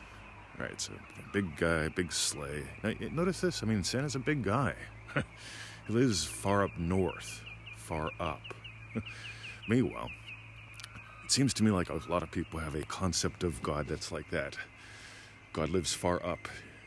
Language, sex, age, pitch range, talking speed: English, male, 40-59, 80-105 Hz, 155 wpm